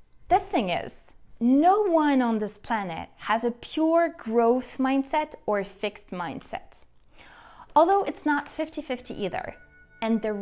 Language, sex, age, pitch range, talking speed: English, female, 20-39, 205-270 Hz, 140 wpm